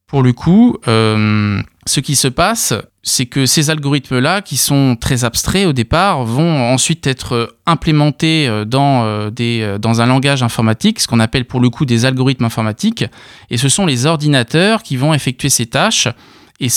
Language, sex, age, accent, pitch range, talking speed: French, male, 20-39, French, 120-160 Hz, 170 wpm